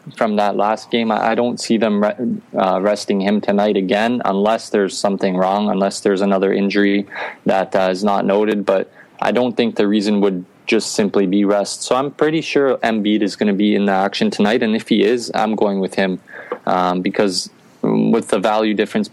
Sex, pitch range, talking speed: male, 100-110 Hz, 205 wpm